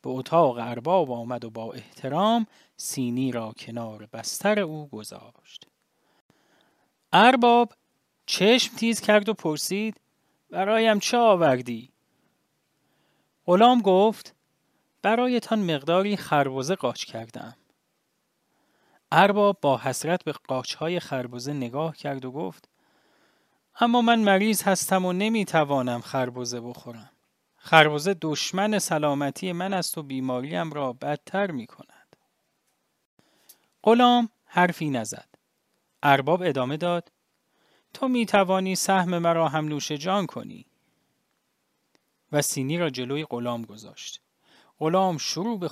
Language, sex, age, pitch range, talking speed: English, male, 30-49, 135-205 Hz, 110 wpm